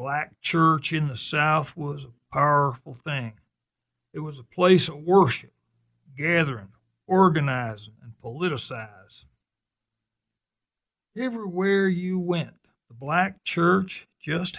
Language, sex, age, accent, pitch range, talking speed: English, male, 60-79, American, 130-170 Hz, 105 wpm